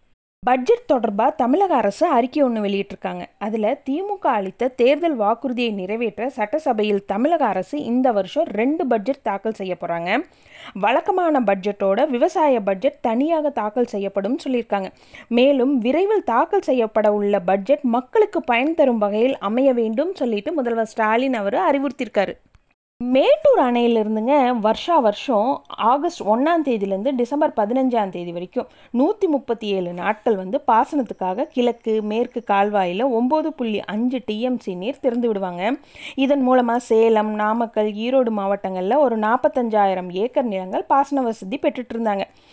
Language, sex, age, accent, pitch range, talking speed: Tamil, female, 20-39, native, 215-285 Hz, 115 wpm